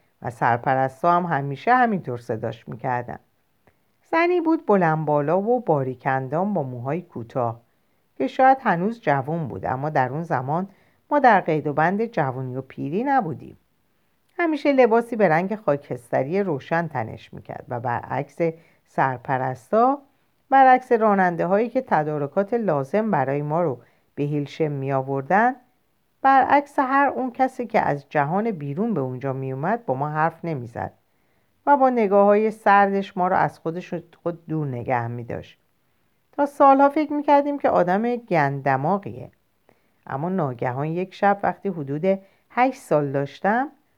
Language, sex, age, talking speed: Persian, female, 50-69, 140 wpm